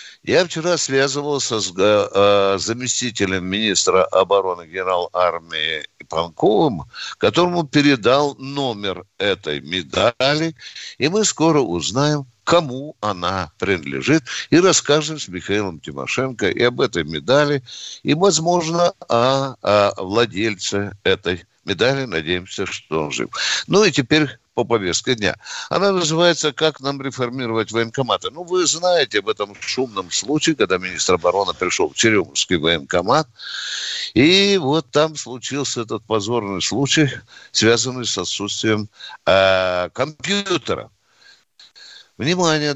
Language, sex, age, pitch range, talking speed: Russian, male, 60-79, 105-155 Hz, 115 wpm